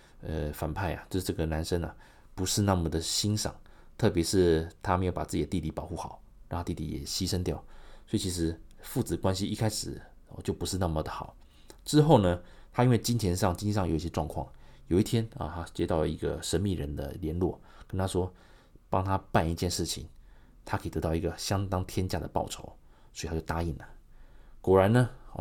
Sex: male